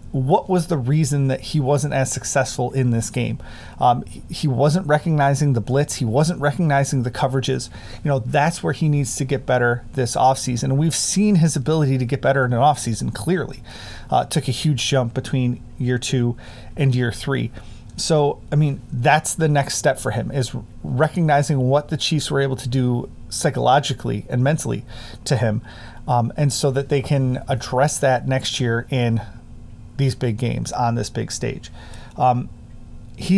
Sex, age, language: male, 30-49, English